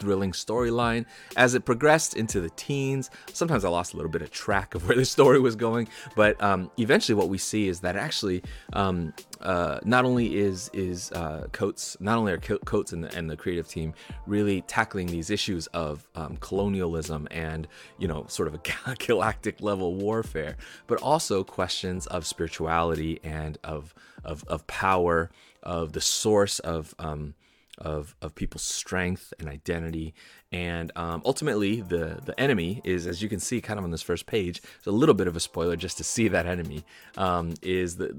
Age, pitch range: 30-49, 85-105 Hz